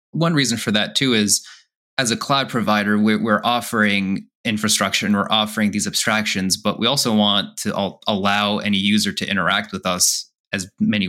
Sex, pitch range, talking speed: male, 95-120 Hz, 175 wpm